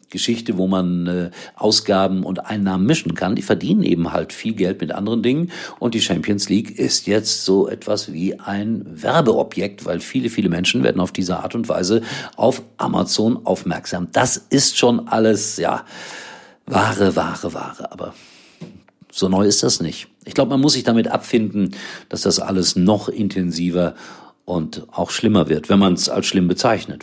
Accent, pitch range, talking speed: German, 90-110 Hz, 175 wpm